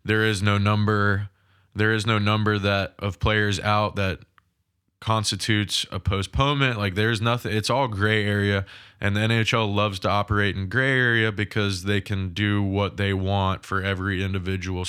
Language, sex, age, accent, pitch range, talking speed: English, male, 20-39, American, 95-105 Hz, 170 wpm